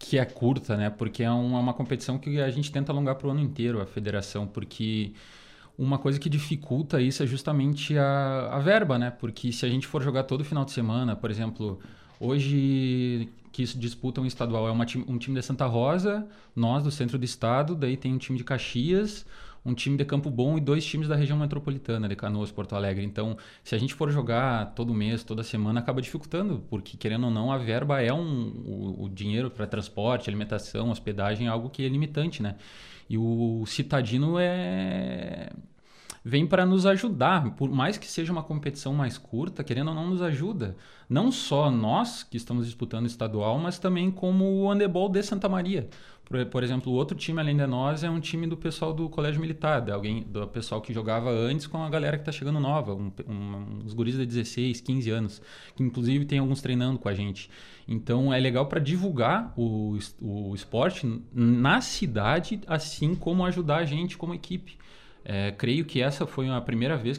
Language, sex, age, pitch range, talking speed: Portuguese, male, 20-39, 115-150 Hz, 200 wpm